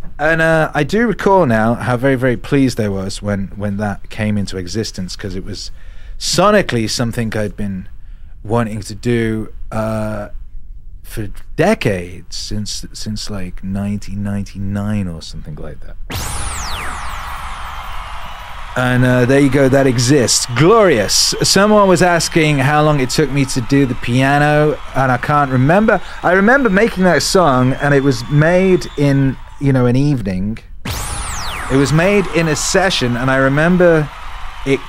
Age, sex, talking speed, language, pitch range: 30-49, male, 150 wpm, English, 100-140 Hz